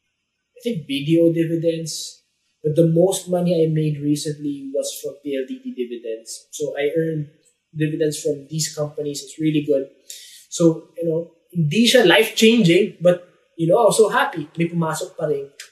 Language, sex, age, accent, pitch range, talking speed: English, male, 20-39, Filipino, 140-220 Hz, 145 wpm